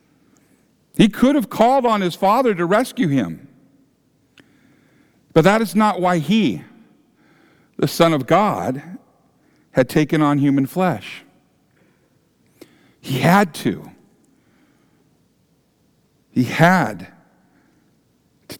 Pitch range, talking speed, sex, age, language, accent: 125-190 Hz, 100 wpm, male, 50-69, English, American